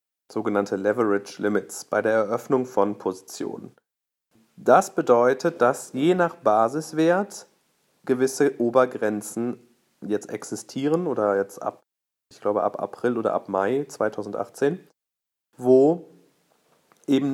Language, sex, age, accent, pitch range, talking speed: German, male, 40-59, German, 110-135 Hz, 105 wpm